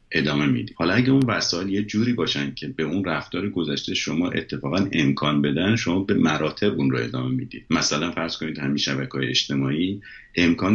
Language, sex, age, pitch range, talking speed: Persian, male, 50-69, 75-105 Hz, 175 wpm